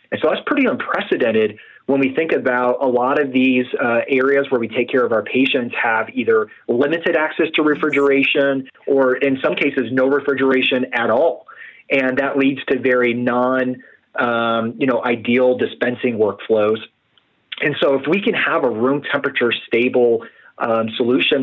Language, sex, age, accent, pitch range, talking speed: English, male, 30-49, American, 115-140 Hz, 170 wpm